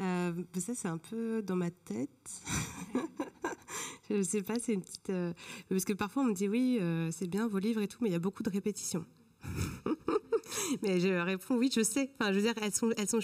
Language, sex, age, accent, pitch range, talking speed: French, female, 20-39, French, 175-215 Hz, 230 wpm